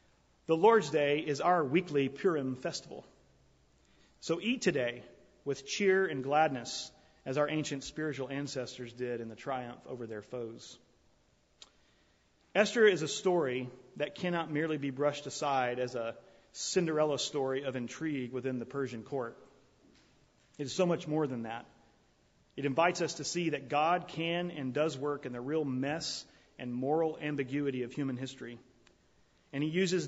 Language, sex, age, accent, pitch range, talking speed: English, male, 40-59, American, 125-155 Hz, 155 wpm